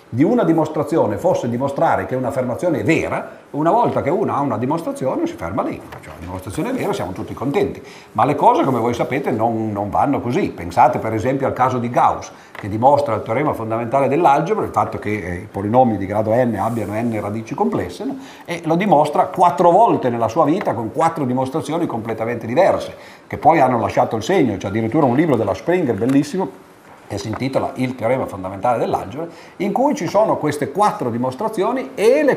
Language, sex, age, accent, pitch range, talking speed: Italian, male, 50-69, native, 120-165 Hz, 200 wpm